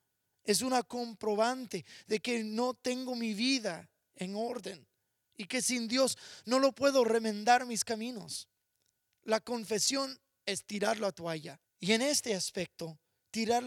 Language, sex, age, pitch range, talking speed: English, male, 30-49, 155-220 Hz, 140 wpm